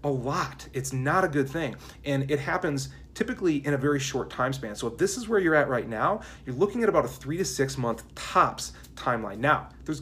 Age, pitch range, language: 30-49, 125-170 Hz, English